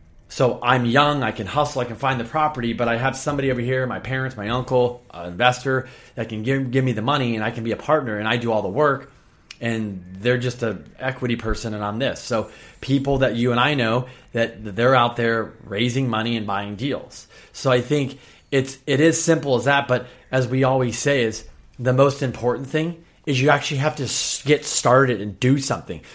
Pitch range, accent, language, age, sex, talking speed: 115-135 Hz, American, English, 30-49, male, 225 wpm